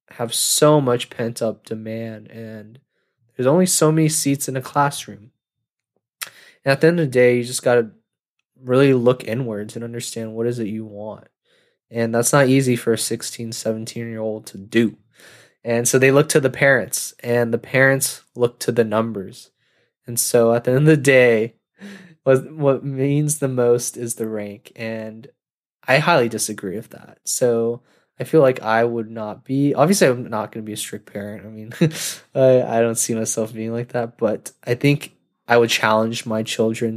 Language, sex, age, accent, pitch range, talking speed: English, male, 20-39, American, 110-130 Hz, 190 wpm